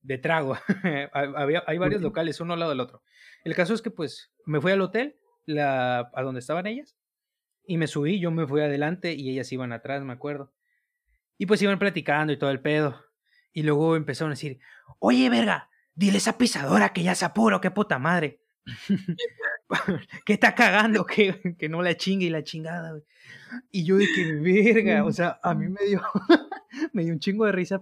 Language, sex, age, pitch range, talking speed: Spanish, male, 20-39, 145-200 Hz, 195 wpm